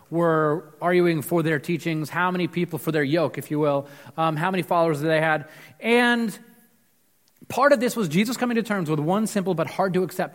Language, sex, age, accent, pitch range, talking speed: English, male, 30-49, American, 145-205 Hz, 215 wpm